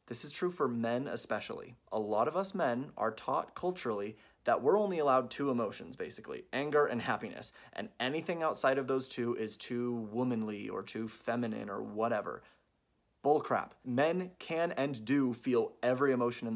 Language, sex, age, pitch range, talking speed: English, male, 30-49, 120-180 Hz, 175 wpm